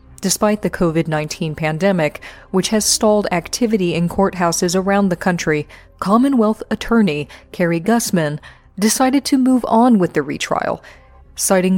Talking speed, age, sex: 125 wpm, 30-49, female